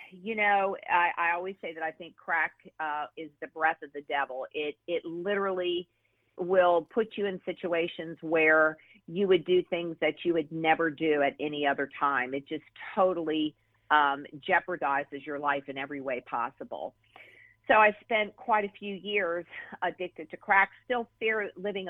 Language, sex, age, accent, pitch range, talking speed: English, female, 50-69, American, 150-180 Hz, 175 wpm